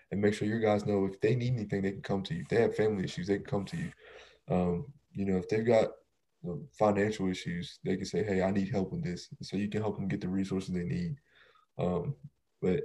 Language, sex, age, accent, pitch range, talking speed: English, male, 20-39, American, 95-110 Hz, 260 wpm